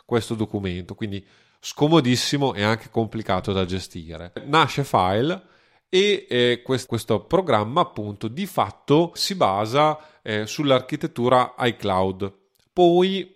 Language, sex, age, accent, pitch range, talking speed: Italian, male, 30-49, native, 105-130 Hz, 110 wpm